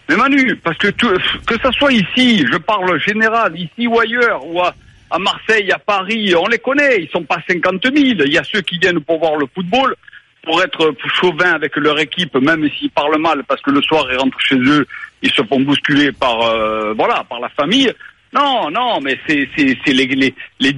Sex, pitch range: male, 145-220 Hz